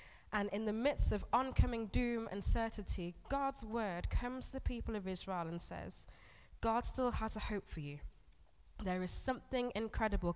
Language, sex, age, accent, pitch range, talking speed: English, female, 20-39, British, 150-230 Hz, 175 wpm